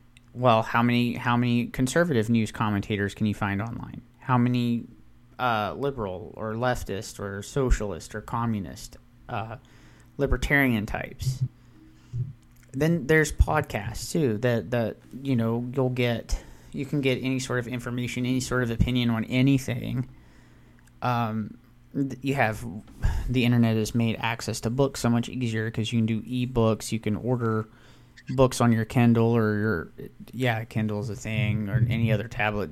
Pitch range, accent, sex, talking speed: 110-125 Hz, American, male, 155 wpm